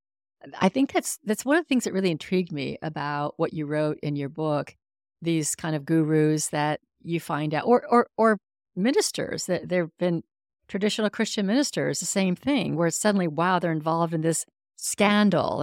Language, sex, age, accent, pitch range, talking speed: English, female, 50-69, American, 155-190 Hz, 190 wpm